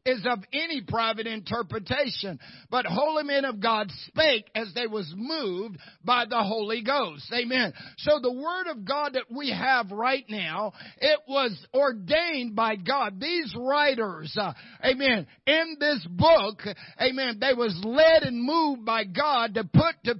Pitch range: 200-265 Hz